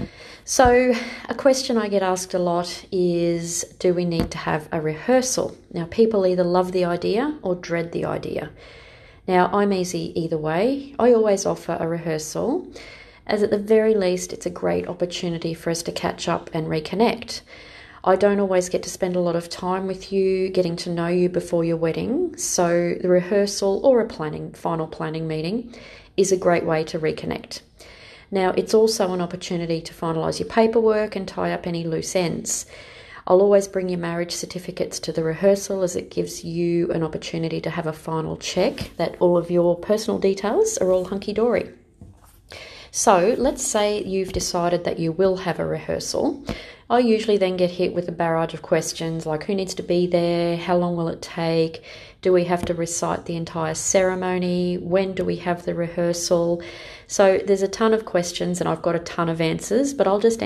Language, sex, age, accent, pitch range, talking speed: English, female, 30-49, Australian, 170-200 Hz, 190 wpm